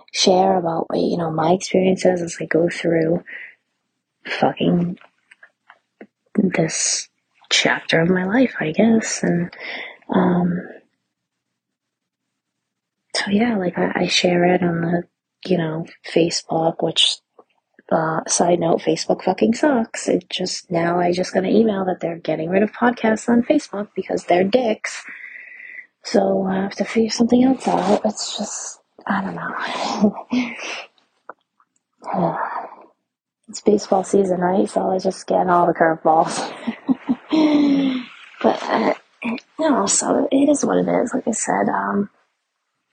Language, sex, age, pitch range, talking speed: English, female, 30-49, 175-225 Hz, 140 wpm